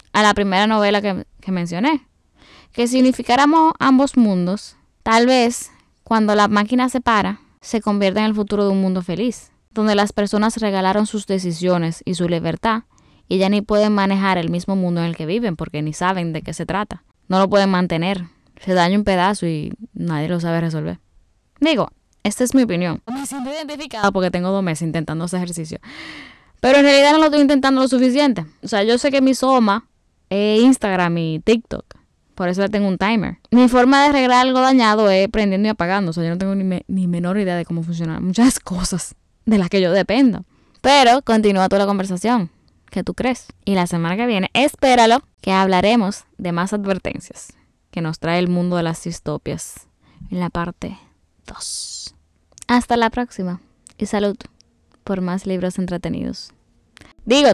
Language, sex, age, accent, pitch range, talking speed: Spanish, female, 10-29, American, 180-235 Hz, 190 wpm